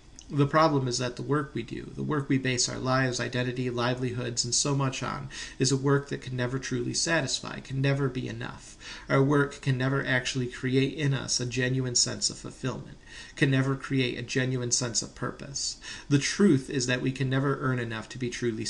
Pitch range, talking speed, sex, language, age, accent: 125-140 Hz, 210 wpm, male, English, 40-59, American